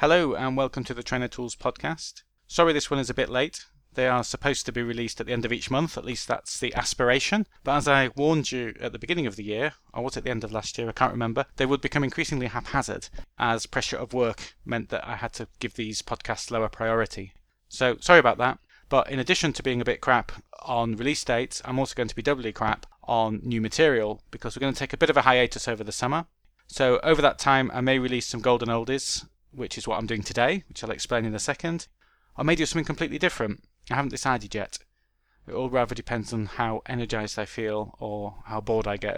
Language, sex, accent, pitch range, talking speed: English, male, British, 115-135 Hz, 240 wpm